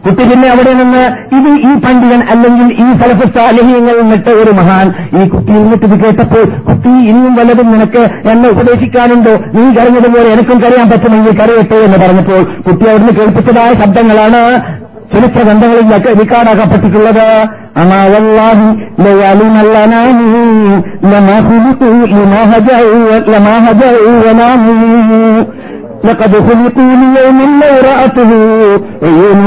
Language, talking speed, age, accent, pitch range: Malayalam, 85 wpm, 50-69, native, 175-235 Hz